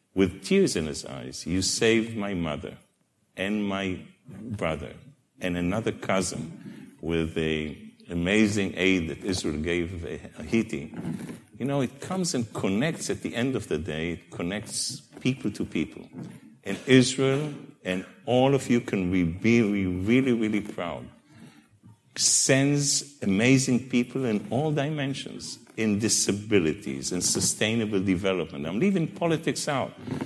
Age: 50-69